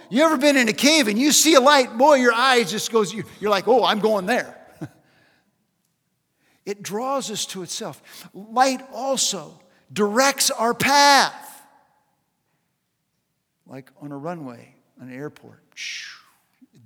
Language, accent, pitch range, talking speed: English, American, 175-260 Hz, 140 wpm